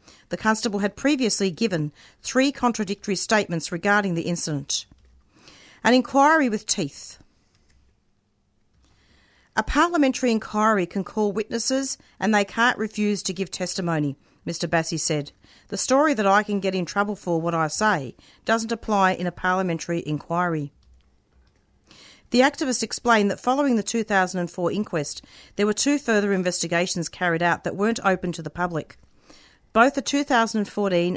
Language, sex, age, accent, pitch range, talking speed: English, female, 40-59, Australian, 160-210 Hz, 140 wpm